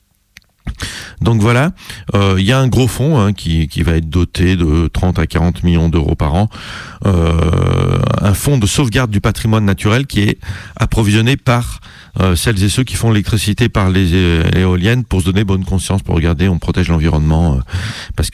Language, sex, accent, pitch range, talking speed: French, male, French, 85-110 Hz, 190 wpm